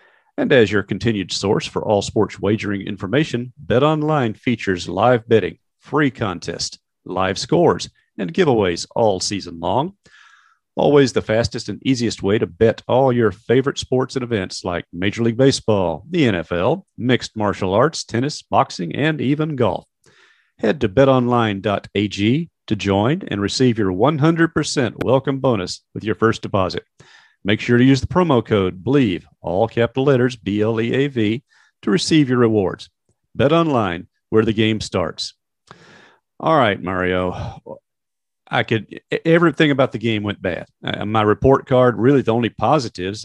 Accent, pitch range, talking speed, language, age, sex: American, 100-135 Hz, 155 wpm, English, 40-59, male